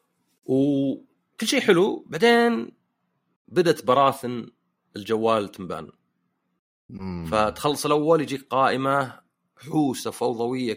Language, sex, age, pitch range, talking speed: Arabic, male, 30-49, 120-160 Hz, 80 wpm